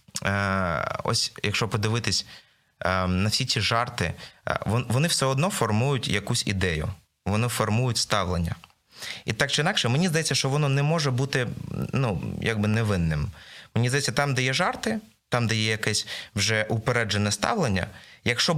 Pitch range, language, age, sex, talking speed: 95-125 Hz, Ukrainian, 20-39, male, 140 wpm